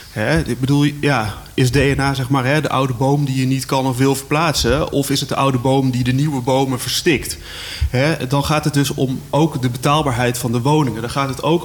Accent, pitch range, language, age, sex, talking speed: Dutch, 130-155 Hz, Dutch, 30-49, male, 235 wpm